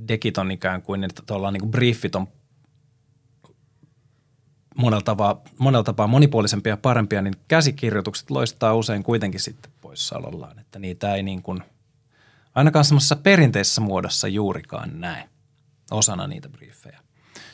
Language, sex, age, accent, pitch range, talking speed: Finnish, male, 20-39, native, 105-140 Hz, 120 wpm